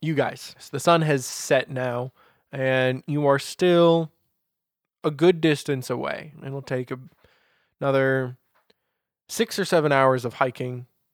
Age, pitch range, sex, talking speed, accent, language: 20-39, 125-155 Hz, male, 135 wpm, American, English